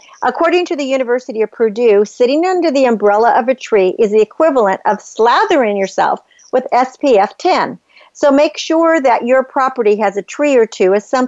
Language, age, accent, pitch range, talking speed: English, 50-69, American, 220-290 Hz, 185 wpm